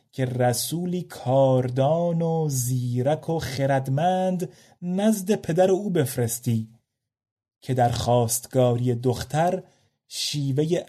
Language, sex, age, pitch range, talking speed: Persian, male, 30-49, 125-150 Hz, 90 wpm